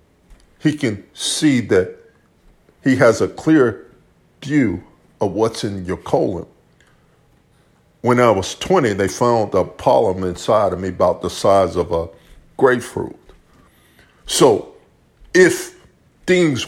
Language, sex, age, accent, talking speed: English, male, 50-69, American, 120 wpm